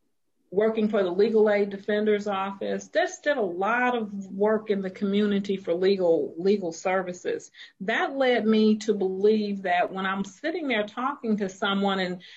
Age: 40-59